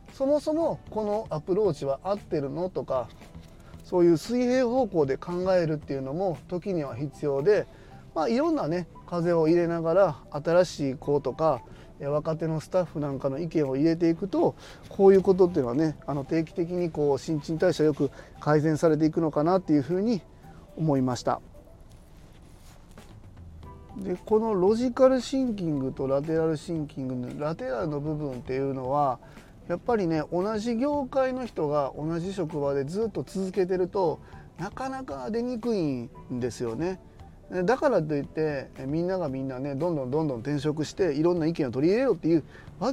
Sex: male